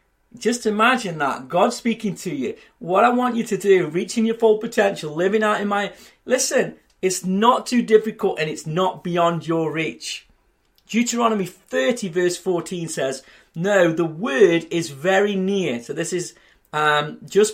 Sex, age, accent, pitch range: male, 30-49, British, 165-215 Hz